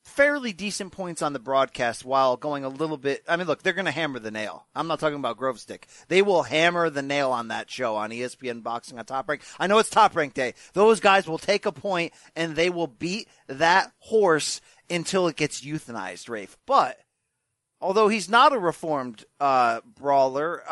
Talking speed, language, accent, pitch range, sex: 205 wpm, English, American, 140-190 Hz, male